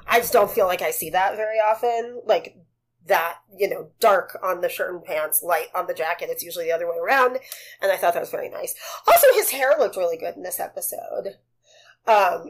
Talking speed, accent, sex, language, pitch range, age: 225 wpm, American, female, English, 190-290 Hz, 30-49